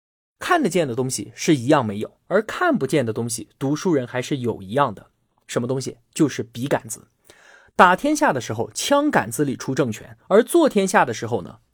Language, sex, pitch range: Chinese, male, 125-205 Hz